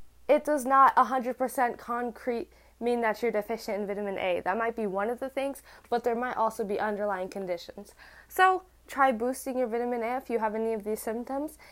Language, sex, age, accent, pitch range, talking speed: English, female, 10-29, American, 210-270 Hz, 200 wpm